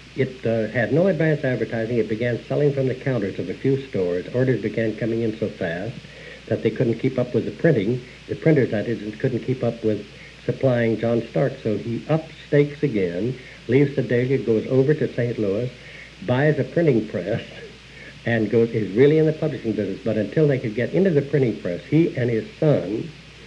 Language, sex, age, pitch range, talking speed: English, male, 60-79, 110-145 Hz, 205 wpm